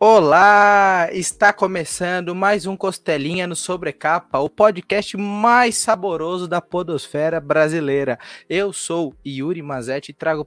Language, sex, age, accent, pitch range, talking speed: Portuguese, male, 20-39, Brazilian, 135-185 Hz, 120 wpm